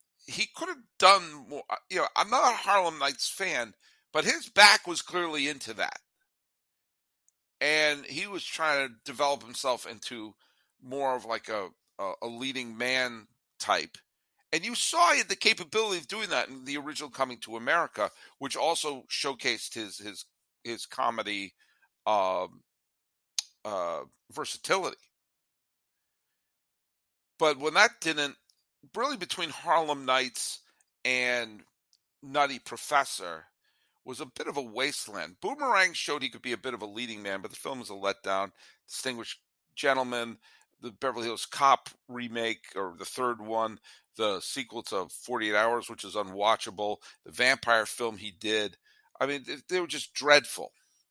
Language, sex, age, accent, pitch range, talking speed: English, male, 50-69, American, 115-150 Hz, 145 wpm